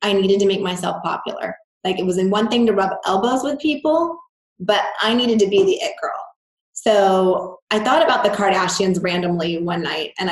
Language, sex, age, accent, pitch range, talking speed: English, female, 20-39, American, 185-220 Hz, 205 wpm